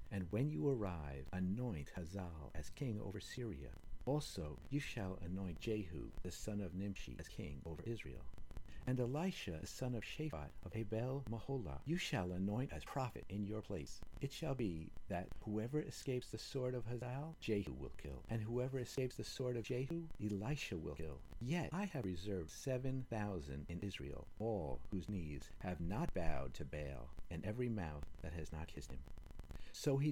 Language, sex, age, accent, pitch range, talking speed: English, male, 50-69, American, 80-120 Hz, 175 wpm